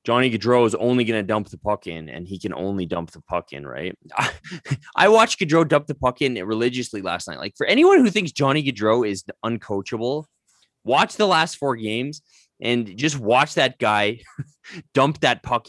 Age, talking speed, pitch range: 20-39, 200 wpm, 100-150 Hz